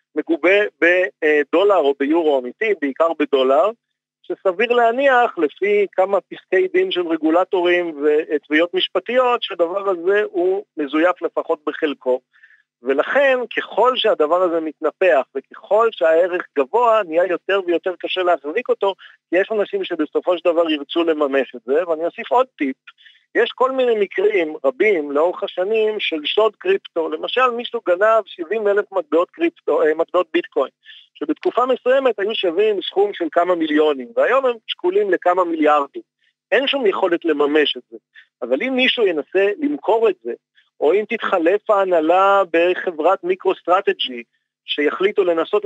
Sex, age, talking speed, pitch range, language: male, 50-69, 135 wpm, 165-255 Hz, Hebrew